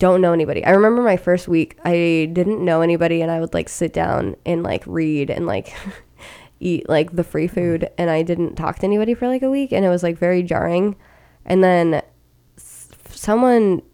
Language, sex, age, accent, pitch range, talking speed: English, female, 20-39, American, 165-180 Hz, 205 wpm